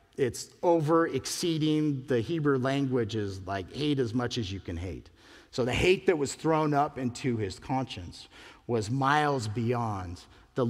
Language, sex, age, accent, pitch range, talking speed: English, male, 50-69, American, 105-135 Hz, 165 wpm